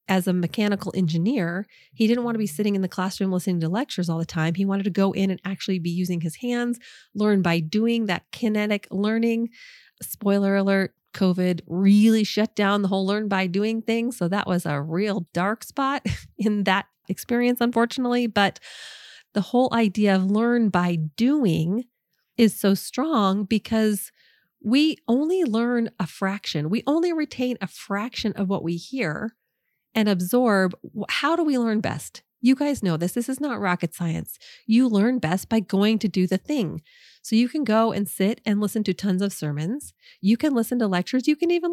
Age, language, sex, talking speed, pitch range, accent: 30-49, English, female, 185 wpm, 190-235 Hz, American